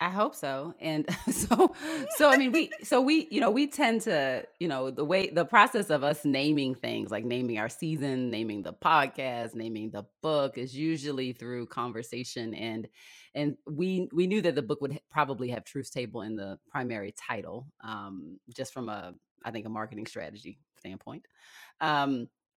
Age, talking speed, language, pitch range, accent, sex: 30-49, 180 wpm, English, 120-165 Hz, American, female